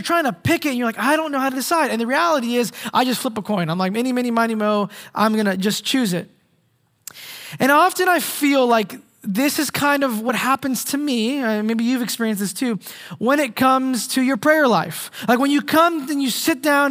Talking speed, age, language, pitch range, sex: 250 wpm, 20-39, English, 220-295 Hz, male